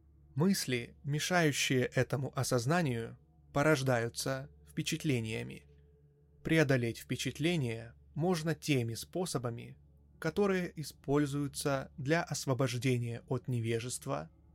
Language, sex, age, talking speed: Russian, male, 20-39, 70 wpm